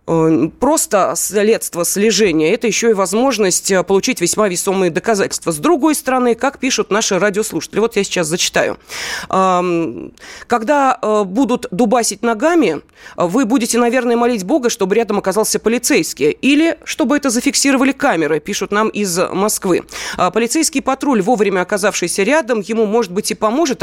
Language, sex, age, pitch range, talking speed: Russian, female, 30-49, 180-245 Hz, 135 wpm